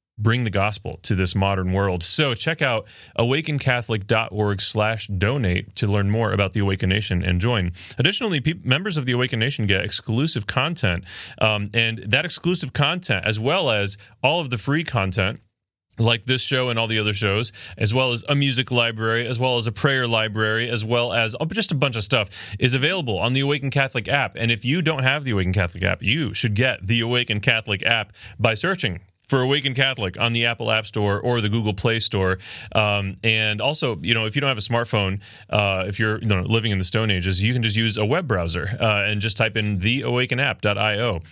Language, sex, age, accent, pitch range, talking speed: English, male, 30-49, American, 100-130 Hz, 205 wpm